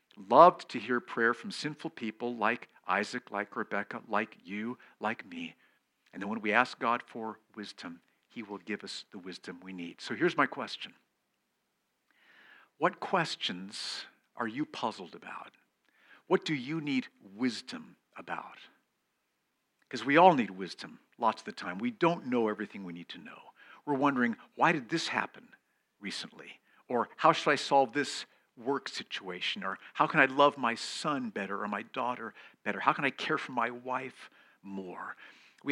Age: 50-69